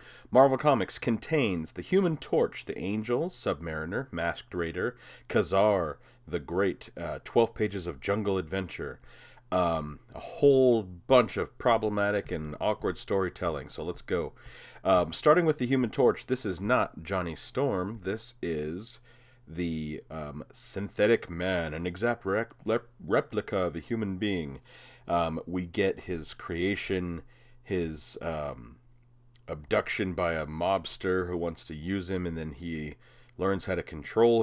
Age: 40-59